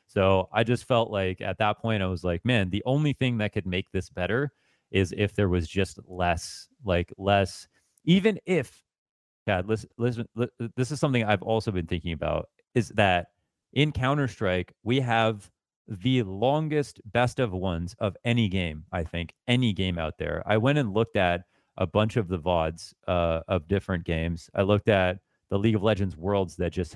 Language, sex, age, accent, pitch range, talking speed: English, male, 30-49, American, 90-110 Hz, 195 wpm